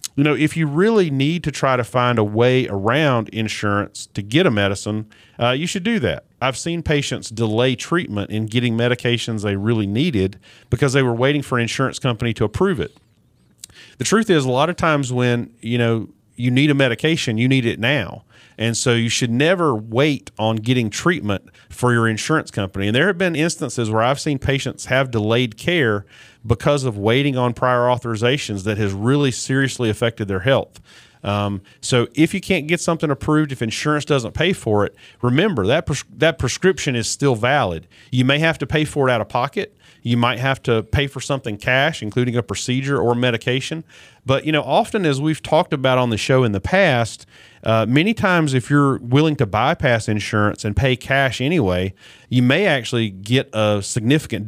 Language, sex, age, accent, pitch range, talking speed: English, male, 40-59, American, 110-145 Hz, 195 wpm